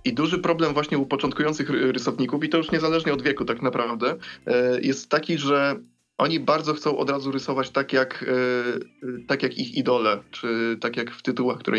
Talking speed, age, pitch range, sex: 185 wpm, 20-39, 120-140 Hz, male